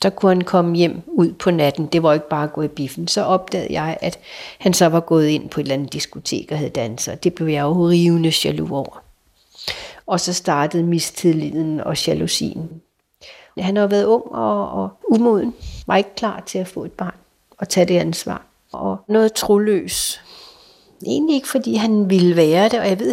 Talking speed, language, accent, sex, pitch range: 200 wpm, Danish, native, female, 165-205 Hz